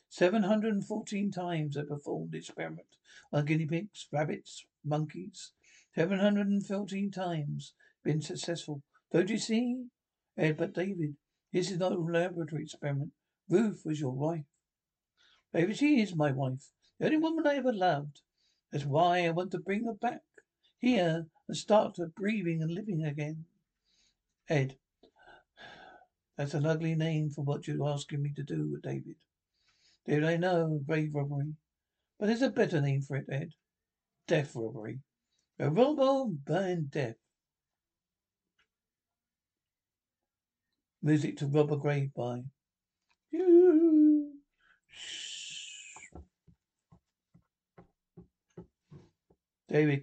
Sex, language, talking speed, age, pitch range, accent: male, English, 120 wpm, 60-79, 145-205 Hz, British